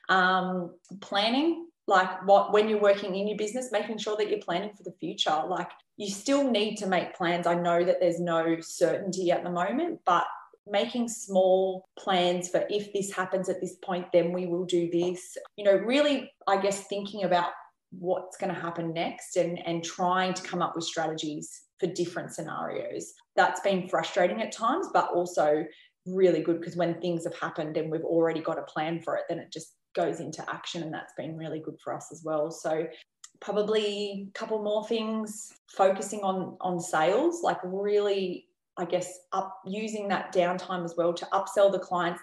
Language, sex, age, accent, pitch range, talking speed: English, female, 20-39, Australian, 175-205 Hz, 190 wpm